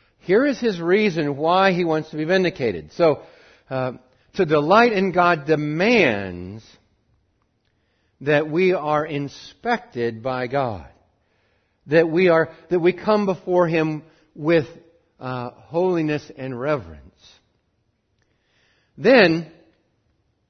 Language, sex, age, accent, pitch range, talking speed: English, male, 60-79, American, 145-190 Hz, 110 wpm